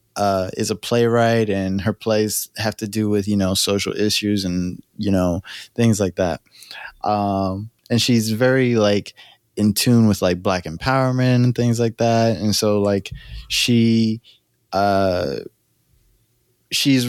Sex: male